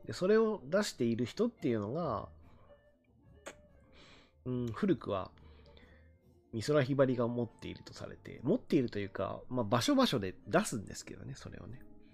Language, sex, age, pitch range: Japanese, male, 30-49, 90-130 Hz